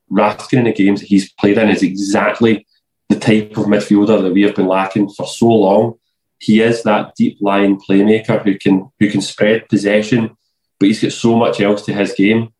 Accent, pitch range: British, 95-110 Hz